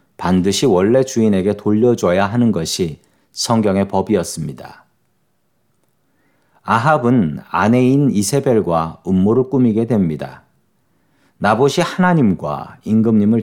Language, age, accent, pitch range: Korean, 40-59, native, 105-135 Hz